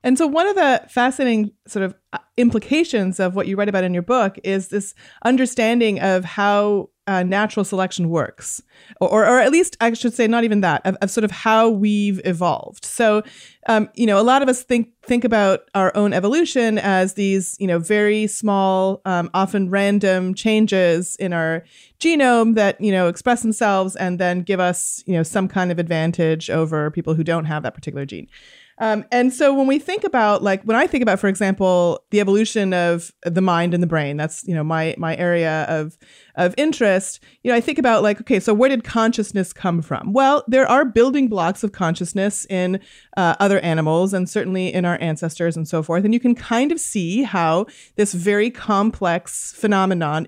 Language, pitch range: English, 180-230 Hz